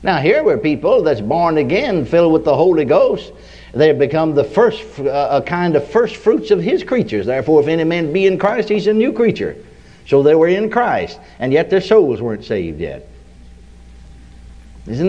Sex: male